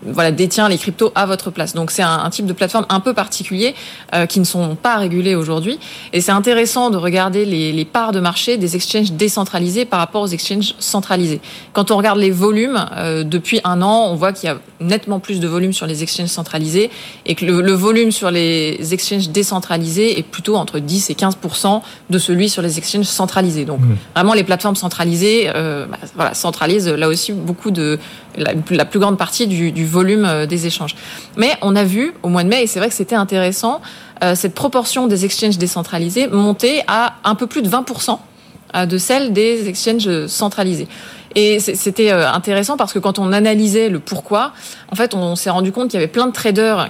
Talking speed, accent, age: 205 wpm, French, 20-39